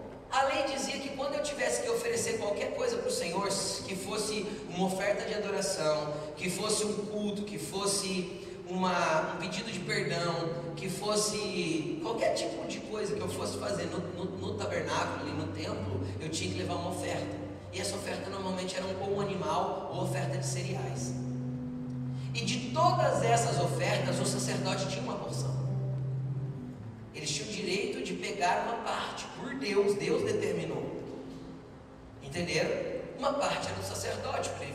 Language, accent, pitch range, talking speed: Portuguese, Brazilian, 130-210 Hz, 160 wpm